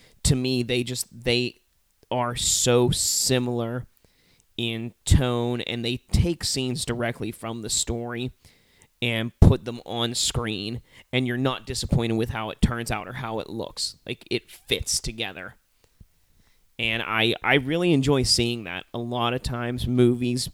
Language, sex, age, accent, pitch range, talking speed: English, male, 30-49, American, 115-125 Hz, 150 wpm